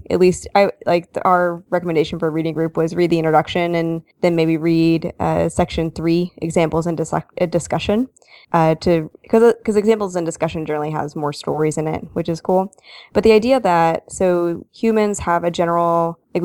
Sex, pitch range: female, 165-185 Hz